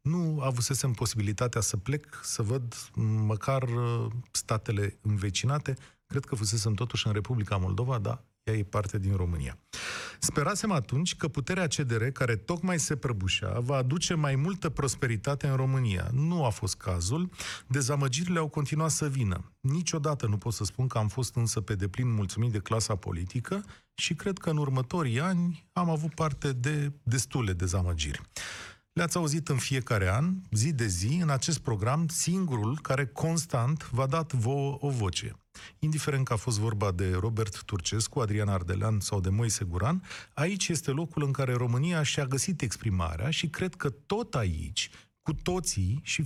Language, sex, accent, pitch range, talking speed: Romanian, male, native, 110-155 Hz, 160 wpm